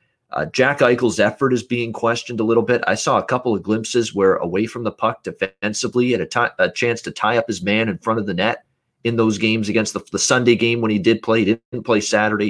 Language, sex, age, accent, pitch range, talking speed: English, male, 30-49, American, 105-120 Hz, 250 wpm